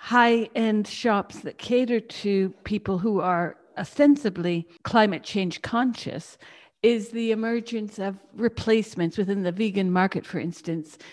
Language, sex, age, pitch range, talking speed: English, female, 60-79, 185-235 Hz, 125 wpm